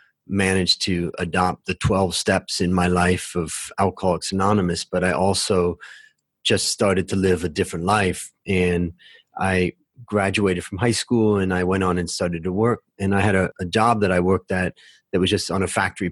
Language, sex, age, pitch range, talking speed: English, male, 30-49, 90-110 Hz, 195 wpm